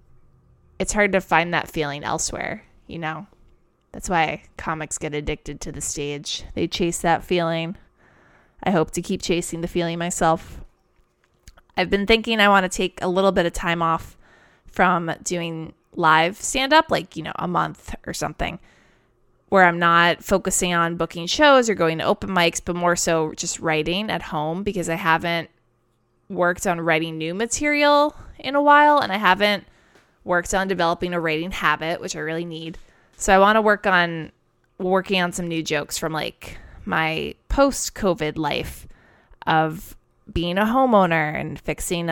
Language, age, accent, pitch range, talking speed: English, 20-39, American, 160-195 Hz, 170 wpm